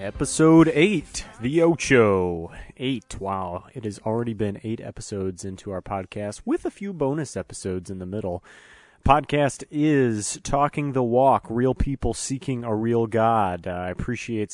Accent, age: American, 30-49